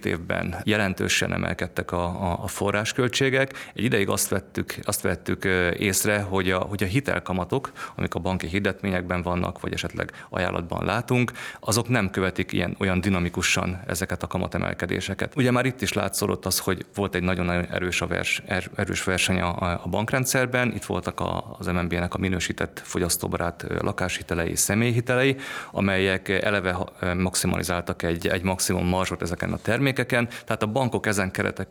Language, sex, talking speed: Hungarian, male, 155 wpm